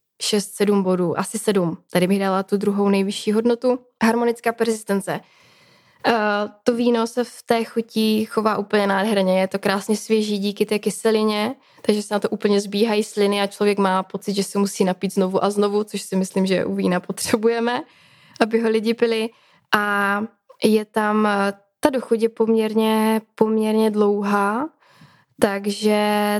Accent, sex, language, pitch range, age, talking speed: native, female, Czech, 195-225 Hz, 20-39, 155 wpm